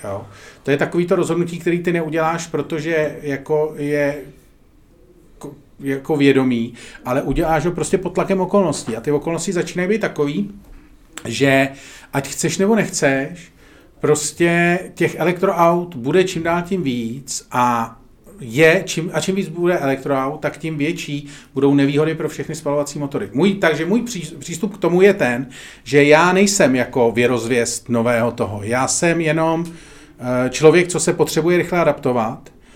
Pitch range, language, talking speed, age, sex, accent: 135-165 Hz, Czech, 145 wpm, 40-59, male, native